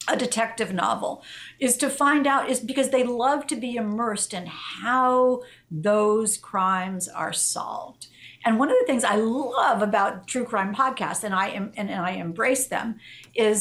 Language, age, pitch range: English, 50-69, 200-255 Hz